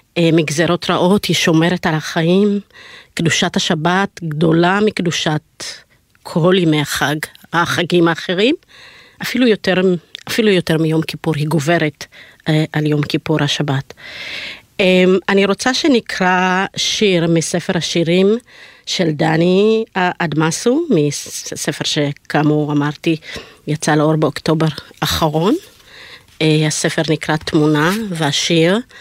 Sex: female